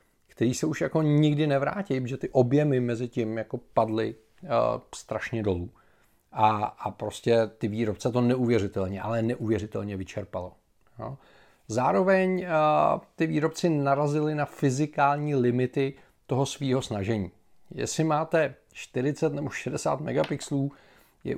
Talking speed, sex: 125 wpm, male